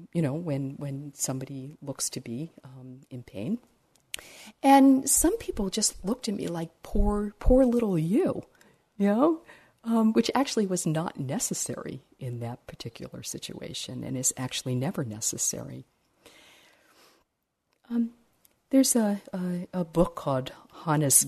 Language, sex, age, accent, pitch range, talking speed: English, female, 50-69, American, 130-180 Hz, 135 wpm